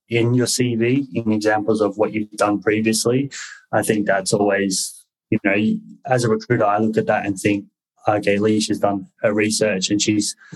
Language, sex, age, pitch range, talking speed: English, male, 20-39, 100-120 Hz, 190 wpm